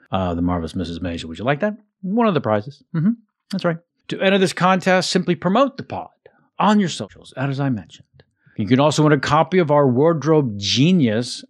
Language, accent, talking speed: English, American, 210 wpm